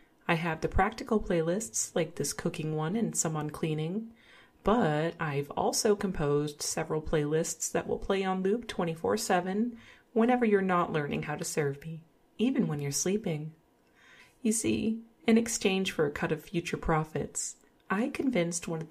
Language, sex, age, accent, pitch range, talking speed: English, female, 30-49, American, 155-215 Hz, 160 wpm